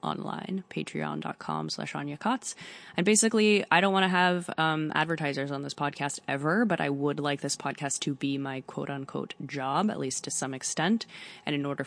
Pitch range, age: 135-155 Hz, 20-39